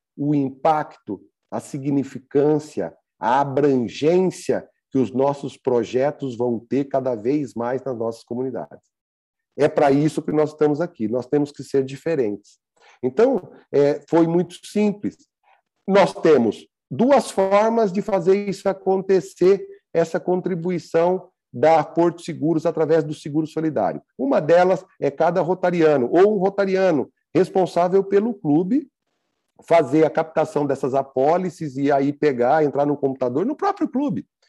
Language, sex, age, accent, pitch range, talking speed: Portuguese, male, 50-69, Brazilian, 145-190 Hz, 130 wpm